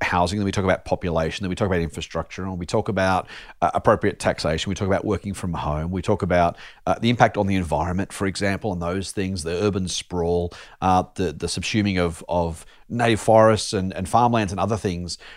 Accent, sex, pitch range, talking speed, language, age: Australian, male, 95-115 Hz, 215 wpm, English, 40-59